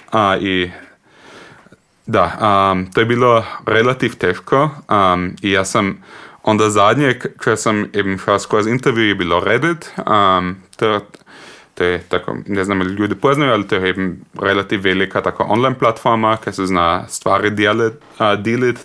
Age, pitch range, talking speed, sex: 20-39, 95-115 Hz, 155 wpm, male